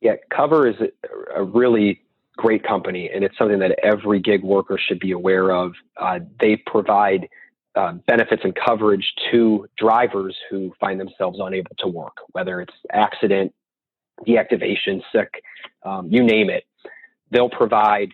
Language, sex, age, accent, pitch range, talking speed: English, male, 30-49, American, 95-110 Hz, 140 wpm